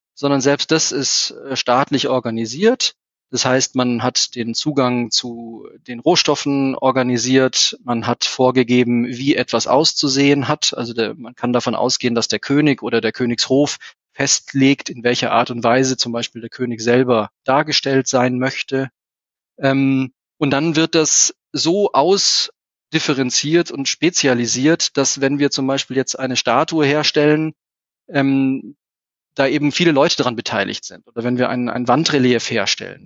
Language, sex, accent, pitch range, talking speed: German, male, German, 125-145 Hz, 145 wpm